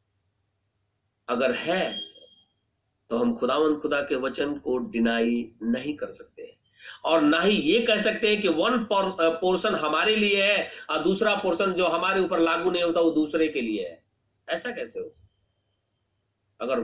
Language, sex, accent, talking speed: Hindi, male, native, 160 wpm